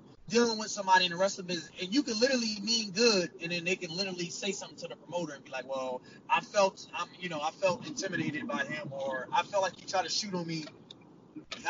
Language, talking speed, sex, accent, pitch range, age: English, 235 wpm, male, American, 185-225 Hz, 20-39